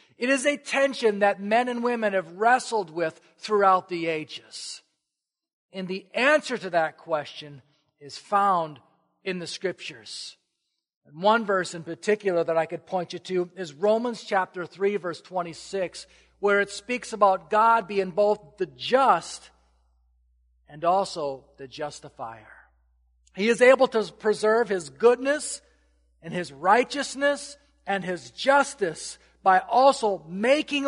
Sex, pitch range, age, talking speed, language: male, 150-215 Hz, 50-69, 140 wpm, English